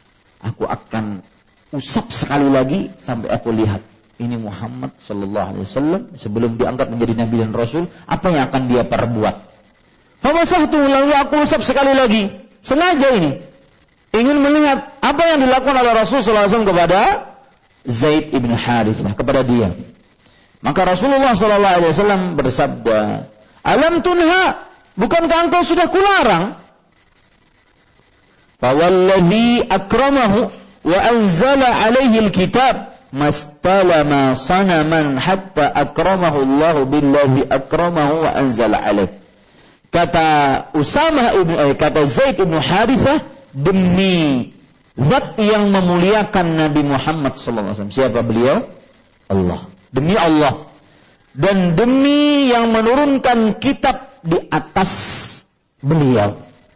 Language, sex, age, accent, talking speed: English, male, 40-59, Indonesian, 95 wpm